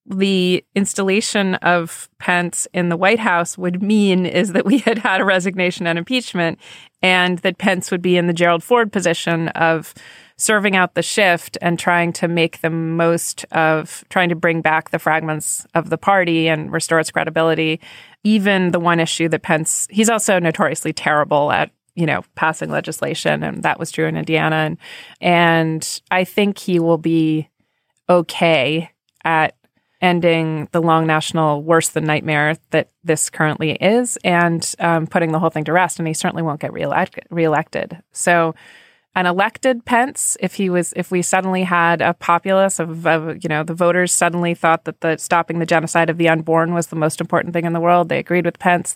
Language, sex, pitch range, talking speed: English, female, 160-180 Hz, 185 wpm